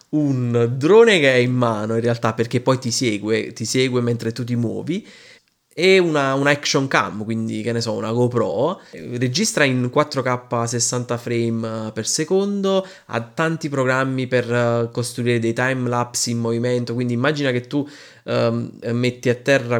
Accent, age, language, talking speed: native, 20-39, Italian, 165 wpm